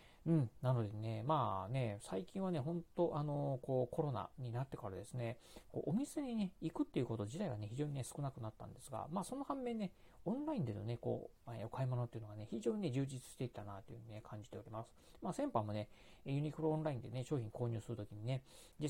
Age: 40-59